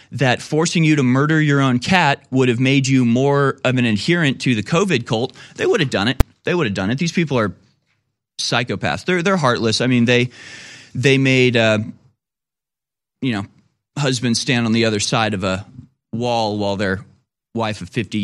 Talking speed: 195 wpm